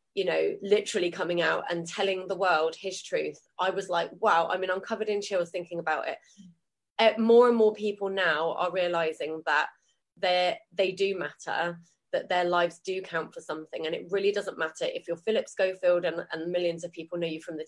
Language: English